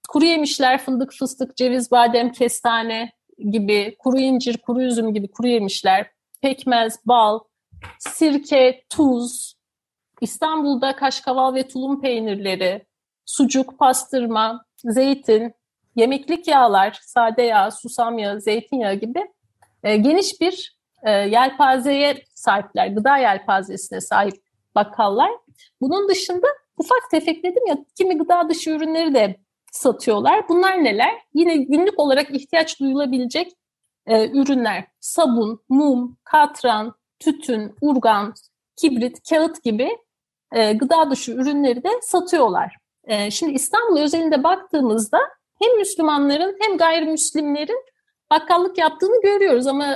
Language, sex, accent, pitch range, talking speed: Turkish, female, native, 235-325 Hz, 115 wpm